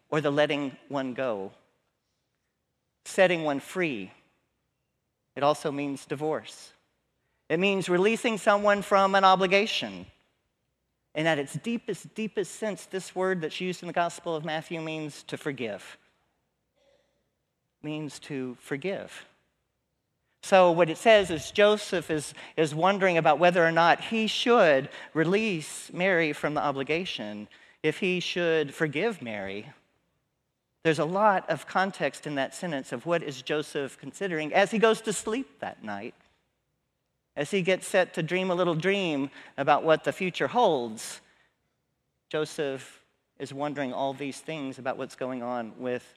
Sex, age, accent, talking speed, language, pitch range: male, 40-59, American, 145 wpm, English, 145-200 Hz